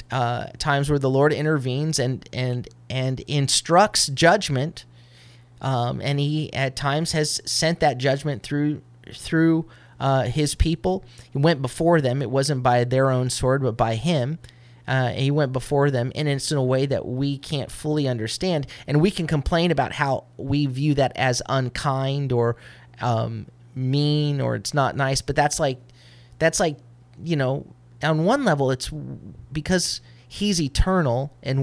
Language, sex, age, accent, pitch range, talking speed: English, male, 30-49, American, 120-150 Hz, 165 wpm